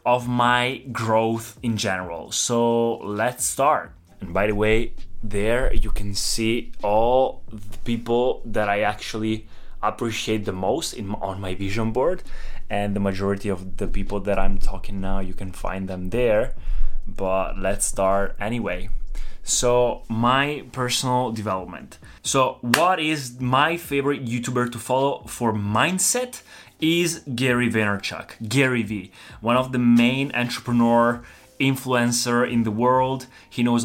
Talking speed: 140 wpm